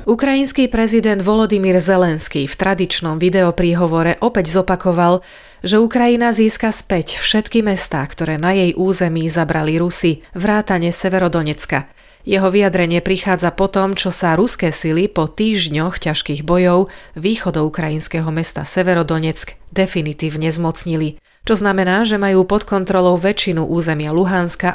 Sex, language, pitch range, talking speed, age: female, Slovak, 165-195 Hz, 125 wpm, 30-49